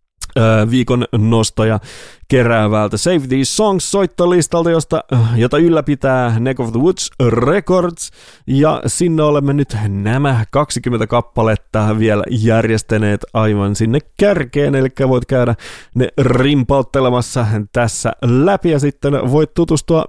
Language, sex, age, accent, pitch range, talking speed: English, male, 30-49, Finnish, 110-145 Hz, 110 wpm